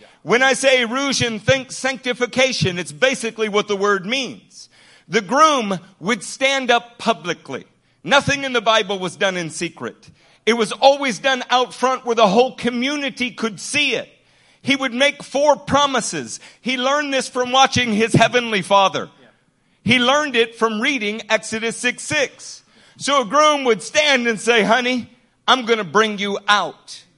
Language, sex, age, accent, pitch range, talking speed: English, male, 50-69, American, 215-270 Hz, 160 wpm